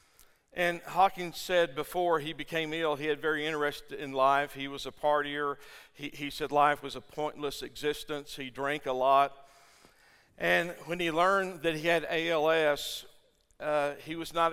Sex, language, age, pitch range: male, English, 50-69, 150-180 Hz